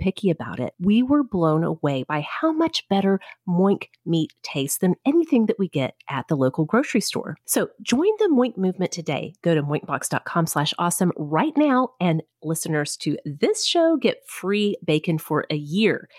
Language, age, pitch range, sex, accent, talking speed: English, 40-59, 160-235 Hz, female, American, 180 wpm